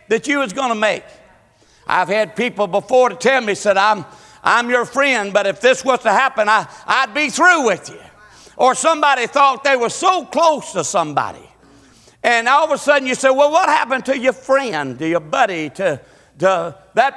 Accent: American